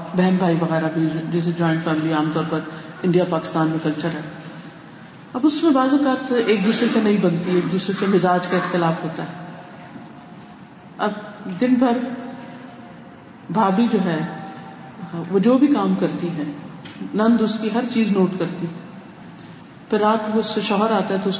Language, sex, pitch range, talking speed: Urdu, female, 180-260 Hz, 170 wpm